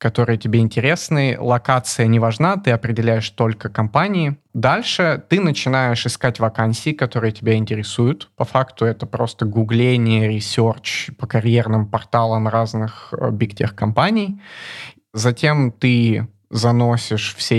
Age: 20-39